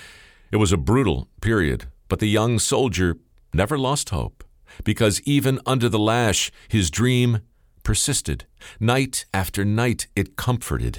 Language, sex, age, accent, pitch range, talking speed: English, male, 50-69, American, 85-110 Hz, 135 wpm